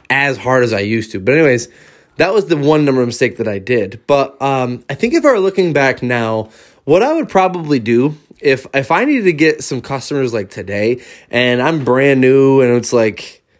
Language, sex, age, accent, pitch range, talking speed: English, male, 20-39, American, 125-145 Hz, 220 wpm